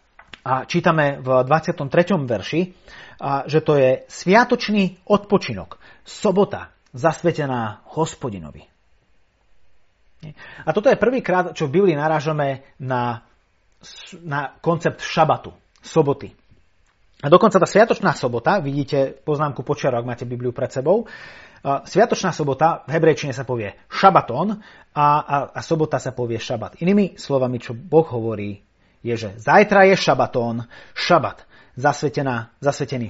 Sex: male